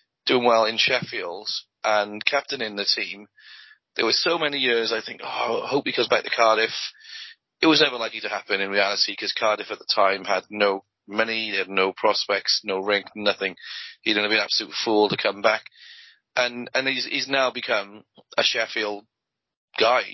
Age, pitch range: 30-49, 105-130 Hz